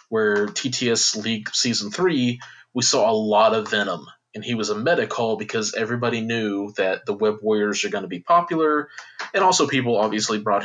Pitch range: 105-125 Hz